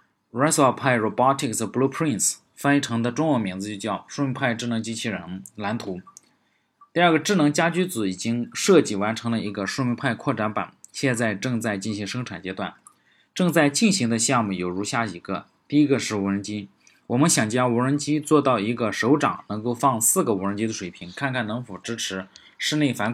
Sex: male